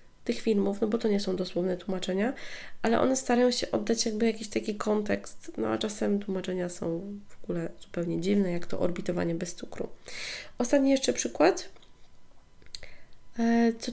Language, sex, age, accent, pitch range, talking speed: Polish, female, 20-39, native, 200-250 Hz, 155 wpm